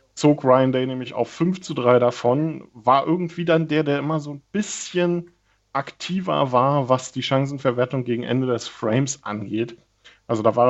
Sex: male